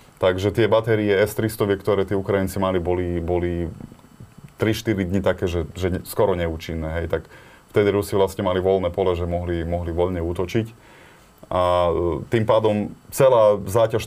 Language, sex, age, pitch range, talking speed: Slovak, male, 20-39, 85-105 Hz, 155 wpm